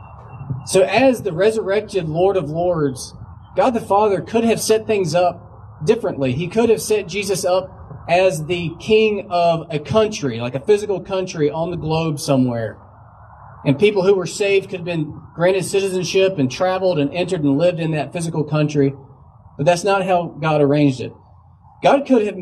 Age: 30-49